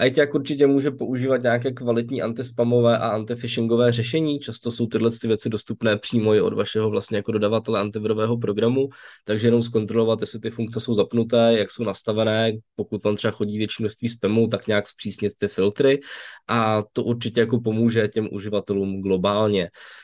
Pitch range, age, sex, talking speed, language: 105-125 Hz, 20-39, male, 165 wpm, Czech